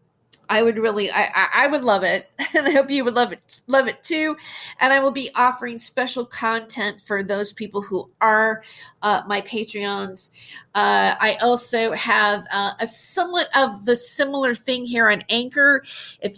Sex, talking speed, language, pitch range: female, 175 wpm, English, 195-250 Hz